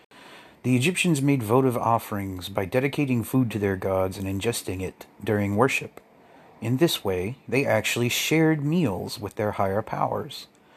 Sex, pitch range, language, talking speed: male, 95-130 Hz, English, 150 wpm